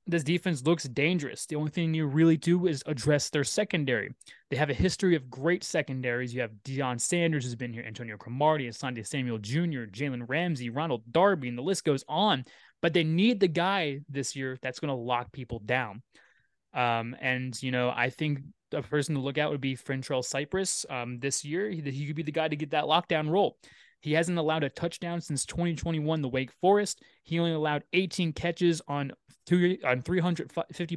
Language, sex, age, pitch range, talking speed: English, male, 20-39, 135-175 Hz, 200 wpm